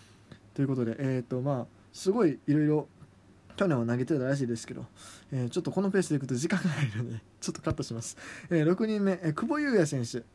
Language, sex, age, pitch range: Japanese, male, 20-39, 115-180 Hz